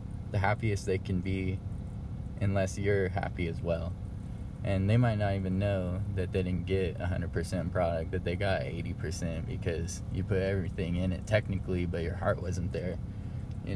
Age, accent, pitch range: 20-39, American, 95-110 Hz